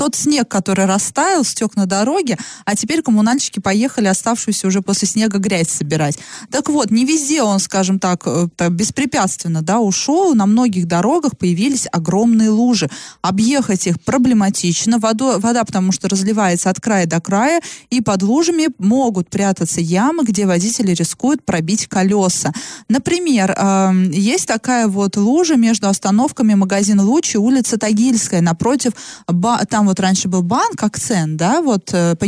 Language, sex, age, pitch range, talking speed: Russian, female, 20-39, 185-240 Hz, 145 wpm